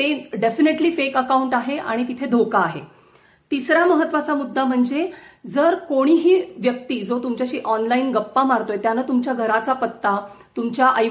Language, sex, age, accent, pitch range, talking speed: Marathi, female, 40-59, native, 230-275 Hz, 140 wpm